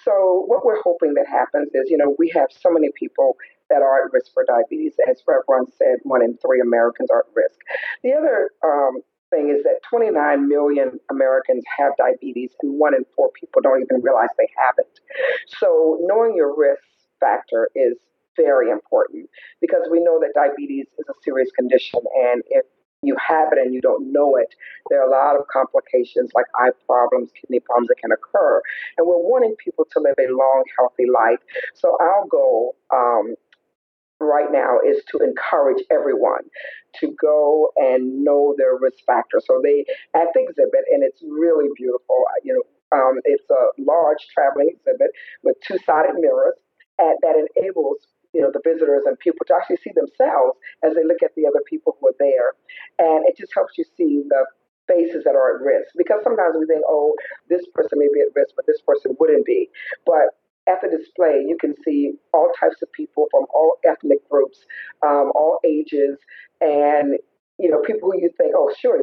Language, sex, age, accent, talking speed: English, female, 40-59, American, 190 wpm